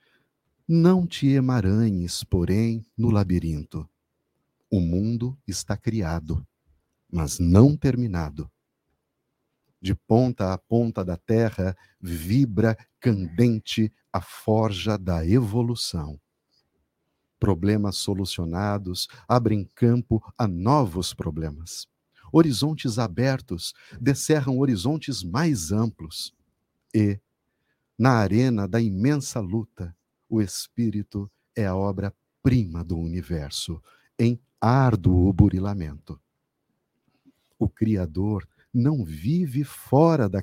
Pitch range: 95-130 Hz